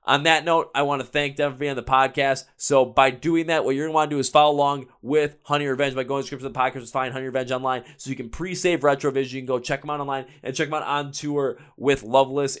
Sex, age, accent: male, 20-39, American